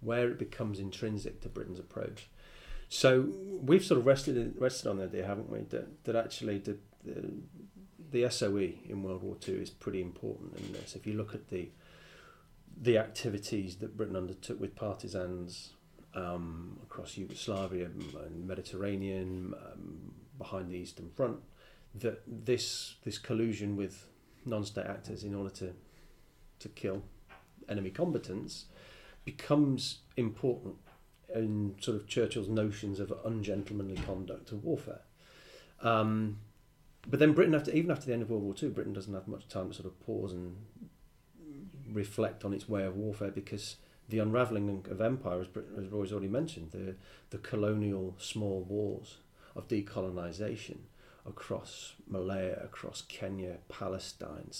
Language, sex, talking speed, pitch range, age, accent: English, male, 145 wpm, 95-120 Hz, 40-59, British